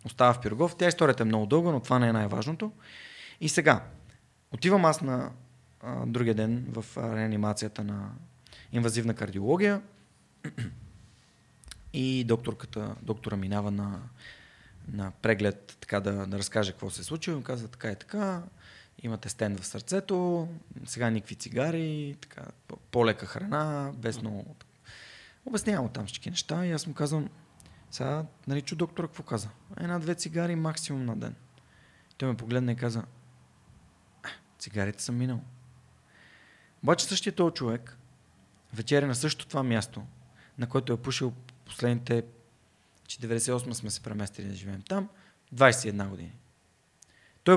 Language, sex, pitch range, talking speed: Bulgarian, male, 110-150 Hz, 140 wpm